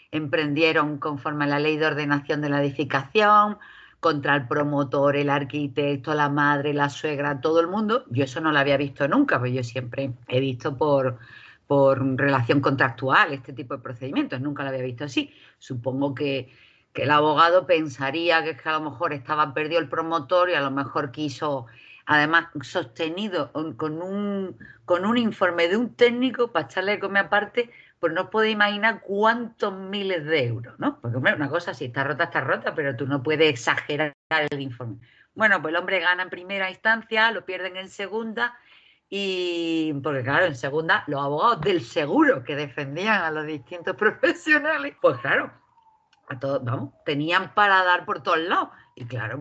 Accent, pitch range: Spanish, 140-185 Hz